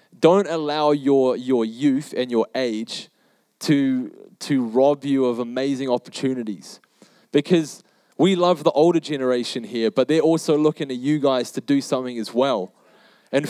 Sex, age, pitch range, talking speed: male, 20-39, 140-180 Hz, 155 wpm